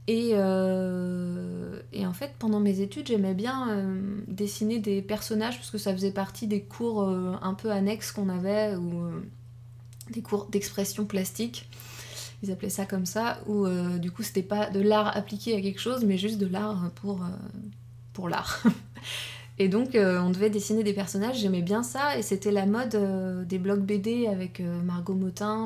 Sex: female